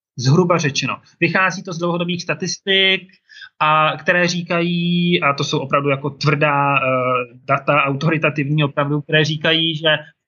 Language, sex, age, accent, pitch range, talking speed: Czech, male, 20-39, native, 145-175 Hz, 140 wpm